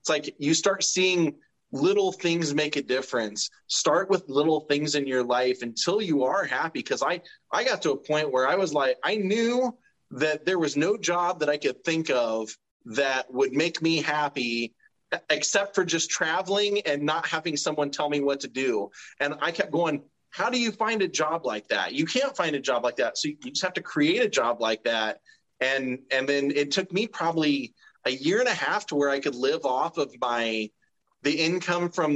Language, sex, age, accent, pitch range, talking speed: English, male, 30-49, American, 130-180 Hz, 215 wpm